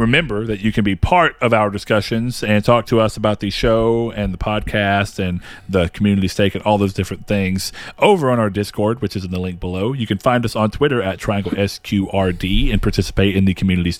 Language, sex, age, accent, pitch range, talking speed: English, male, 40-59, American, 95-120 Hz, 225 wpm